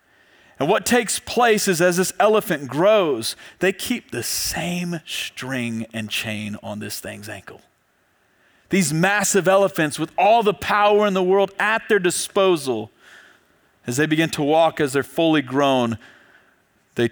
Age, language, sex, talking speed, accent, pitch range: 40-59, English, male, 150 wpm, American, 115-185 Hz